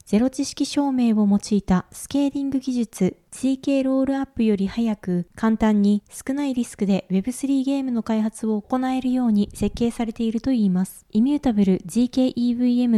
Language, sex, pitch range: Japanese, female, 205-260 Hz